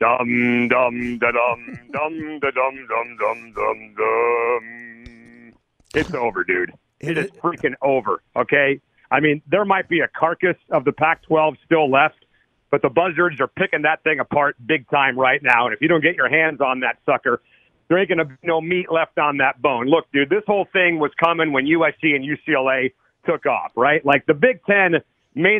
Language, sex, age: English, male, 40-59